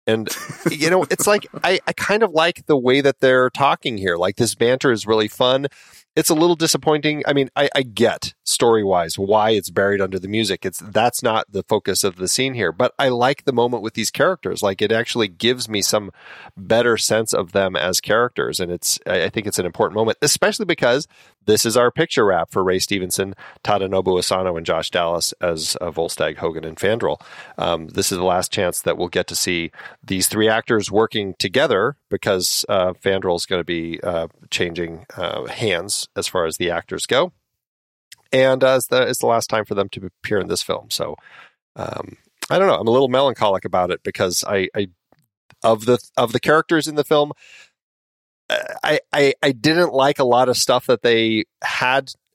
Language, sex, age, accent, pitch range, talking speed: English, male, 30-49, American, 95-130 Hz, 205 wpm